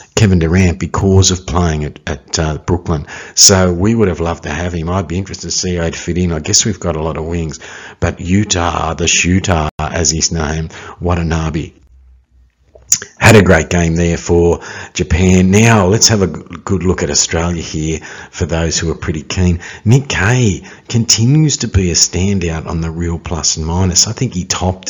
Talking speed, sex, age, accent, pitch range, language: 200 wpm, male, 50-69, Australian, 80-100 Hz, English